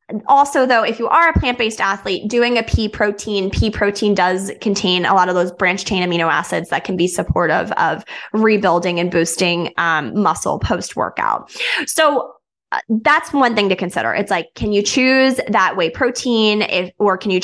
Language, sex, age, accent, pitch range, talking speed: English, female, 20-39, American, 200-250 Hz, 180 wpm